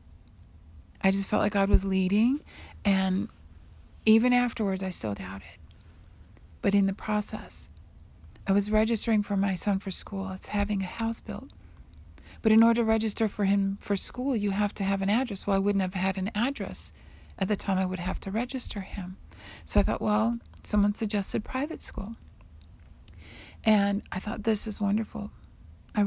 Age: 40-59